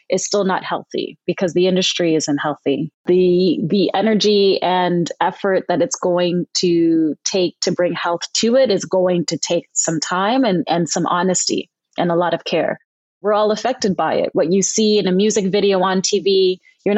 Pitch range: 175-200 Hz